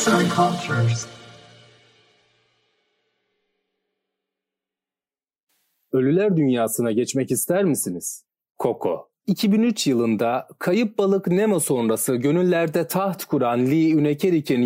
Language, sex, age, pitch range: Turkish, male, 40-59, 130-190 Hz